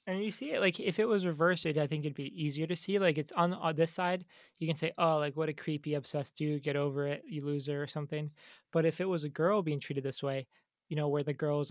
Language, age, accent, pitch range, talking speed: English, 20-39, American, 145-165 Hz, 275 wpm